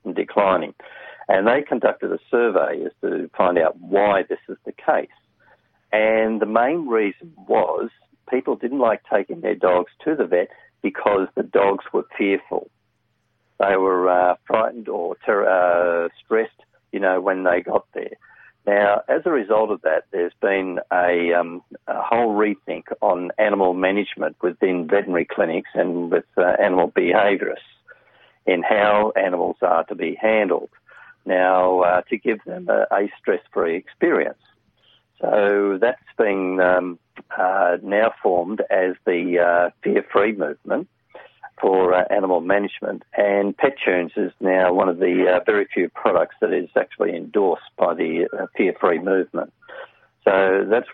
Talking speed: 150 wpm